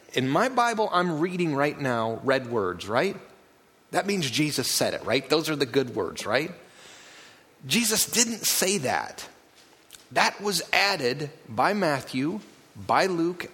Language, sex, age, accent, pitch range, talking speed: English, male, 30-49, American, 135-200 Hz, 145 wpm